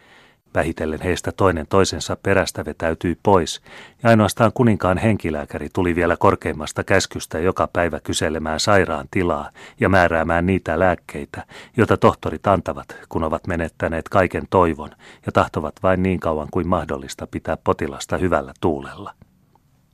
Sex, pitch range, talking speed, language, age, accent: male, 80-95 Hz, 130 wpm, Finnish, 30-49, native